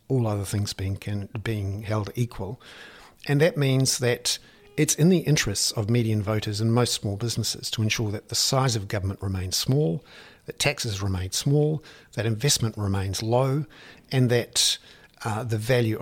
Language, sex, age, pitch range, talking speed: English, male, 50-69, 105-130 Hz, 160 wpm